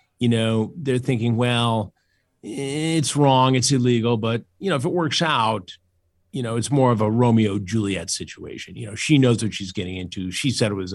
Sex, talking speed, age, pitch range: male, 205 wpm, 40-59, 95-125 Hz